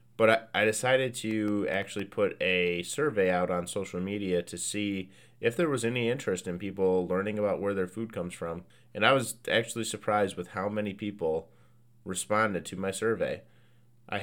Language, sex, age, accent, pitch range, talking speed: English, male, 30-49, American, 95-115 Hz, 175 wpm